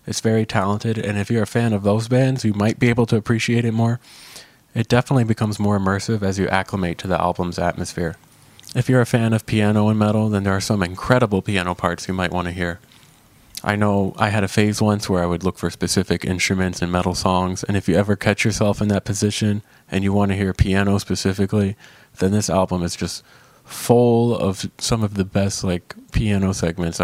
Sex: male